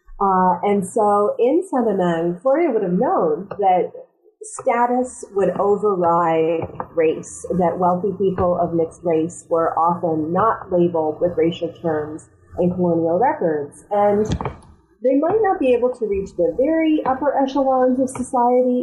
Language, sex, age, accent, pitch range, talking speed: English, female, 30-49, American, 170-220 Hz, 140 wpm